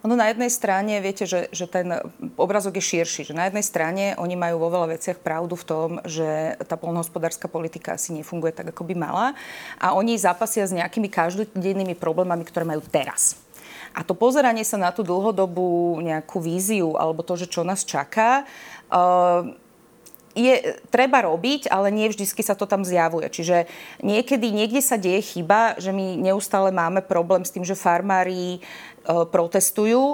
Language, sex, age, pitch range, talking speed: Slovak, female, 30-49, 175-210 Hz, 170 wpm